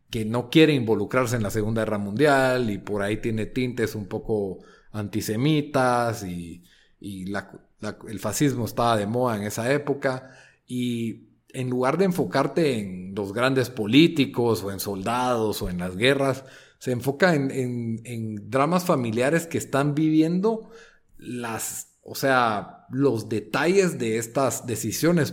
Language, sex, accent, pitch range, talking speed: Spanish, male, Mexican, 110-140 Hz, 150 wpm